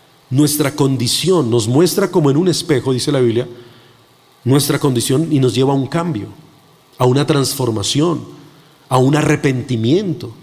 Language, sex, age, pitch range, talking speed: Spanish, male, 40-59, 130-180 Hz, 145 wpm